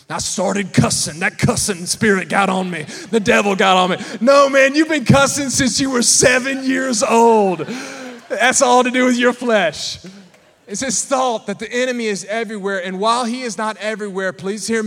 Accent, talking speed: American, 195 wpm